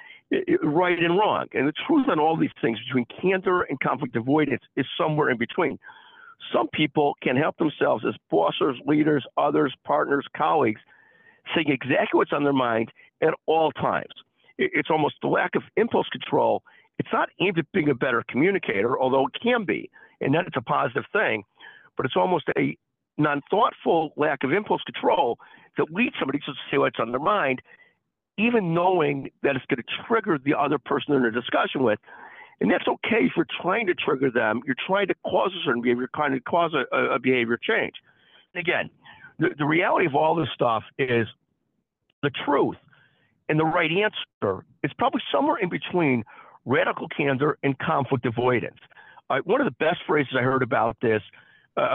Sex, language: male, English